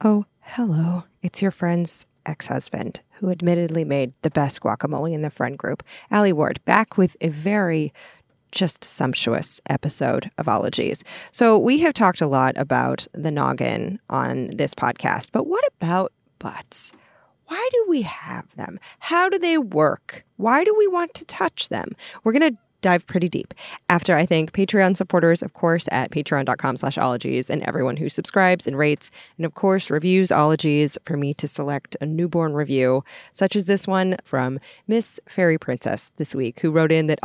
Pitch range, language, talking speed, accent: 150-195 Hz, English, 175 wpm, American